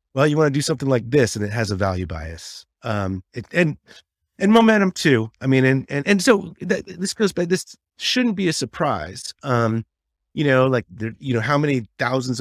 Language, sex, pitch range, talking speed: English, male, 95-135 Hz, 220 wpm